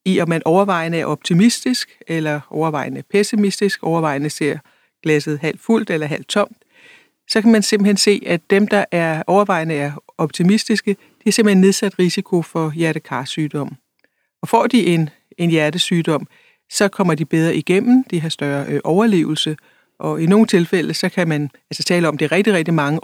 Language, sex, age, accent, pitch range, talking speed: Danish, female, 60-79, native, 155-195 Hz, 170 wpm